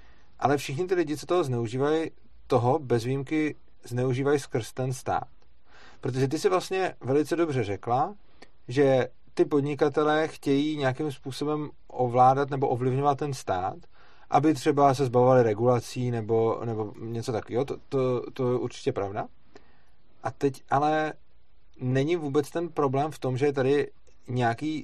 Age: 30-49